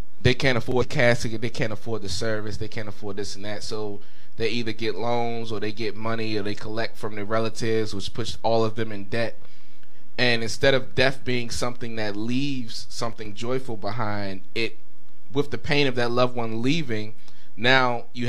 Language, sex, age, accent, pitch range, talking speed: English, male, 20-39, American, 105-125 Hz, 195 wpm